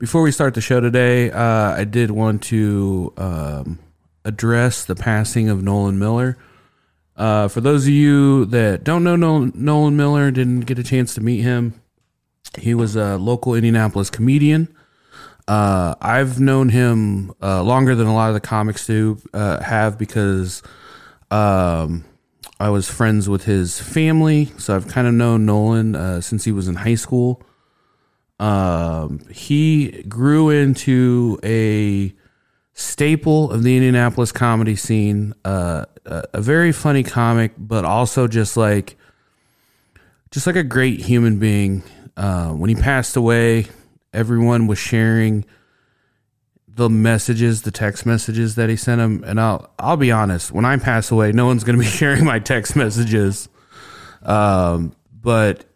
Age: 30-49